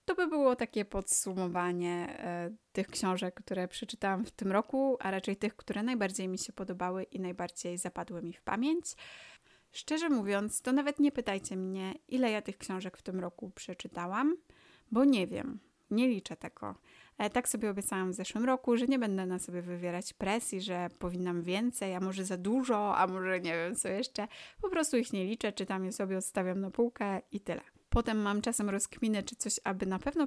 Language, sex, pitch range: Polish, female, 185-235 Hz